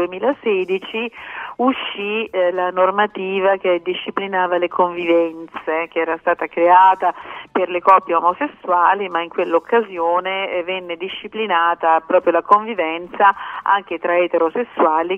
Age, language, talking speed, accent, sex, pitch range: 40-59, Italian, 115 wpm, native, female, 170-210 Hz